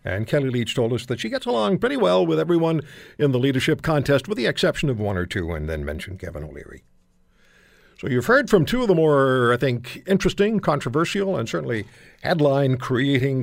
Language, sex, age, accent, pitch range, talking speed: English, male, 60-79, American, 115-165 Hz, 195 wpm